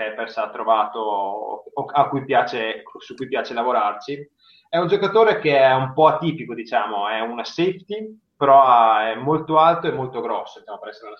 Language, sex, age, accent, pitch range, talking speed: Italian, male, 20-39, native, 115-150 Hz, 155 wpm